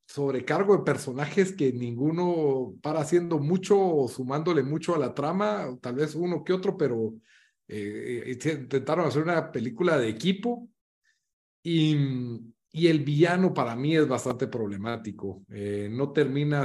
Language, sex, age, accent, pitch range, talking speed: Spanish, male, 40-59, Mexican, 130-185 Hz, 140 wpm